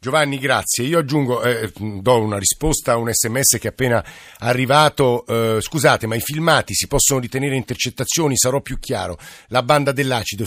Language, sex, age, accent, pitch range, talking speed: Italian, male, 50-69, native, 115-140 Hz, 170 wpm